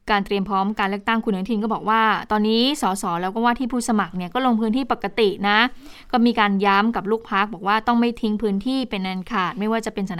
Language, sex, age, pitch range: Thai, female, 20-39, 185-235 Hz